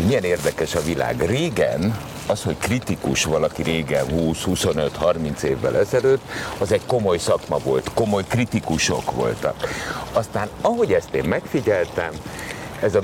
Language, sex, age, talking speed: Hungarian, male, 60-79, 130 wpm